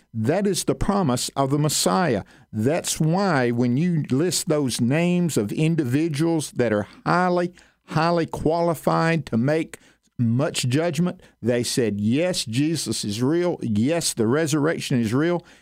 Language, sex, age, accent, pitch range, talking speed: English, male, 50-69, American, 125-175 Hz, 140 wpm